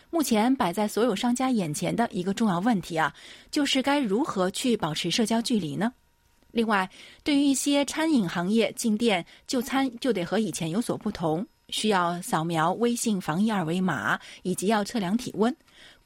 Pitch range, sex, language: 170-235 Hz, female, Chinese